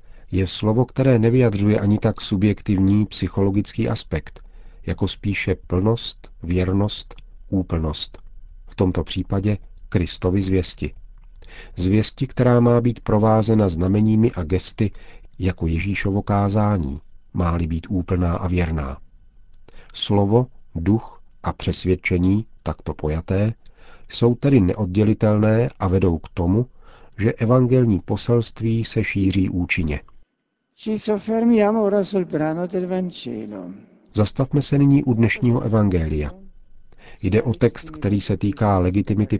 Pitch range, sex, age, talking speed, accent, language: 95-115 Hz, male, 50-69, 100 wpm, native, Czech